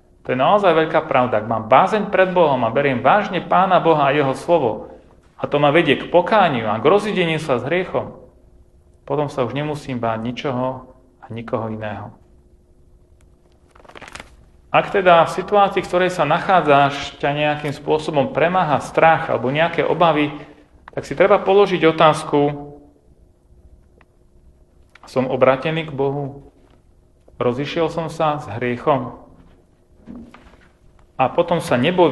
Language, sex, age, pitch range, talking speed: Slovak, male, 40-59, 110-160 Hz, 135 wpm